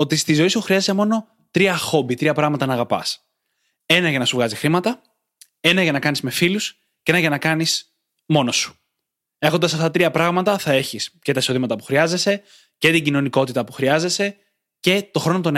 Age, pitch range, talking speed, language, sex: 20-39, 135-190 Hz, 195 wpm, Greek, male